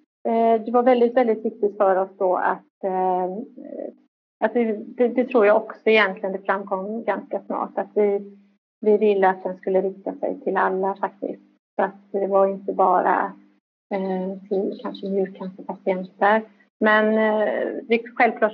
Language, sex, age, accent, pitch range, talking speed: Swedish, female, 30-49, native, 195-225 Hz, 150 wpm